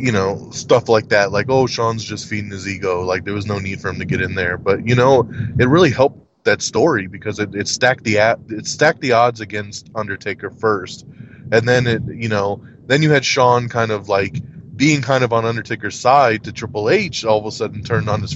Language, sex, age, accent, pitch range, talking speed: English, male, 20-39, American, 105-140 Hz, 235 wpm